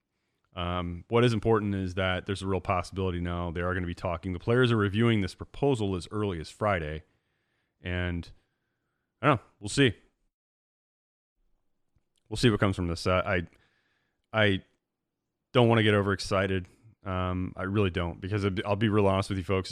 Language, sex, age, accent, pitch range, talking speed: English, male, 30-49, American, 90-105 Hz, 180 wpm